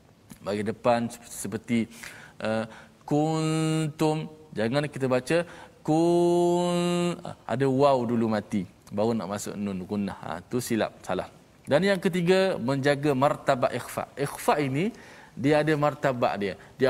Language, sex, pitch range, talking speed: Malayalam, male, 120-150 Hz, 130 wpm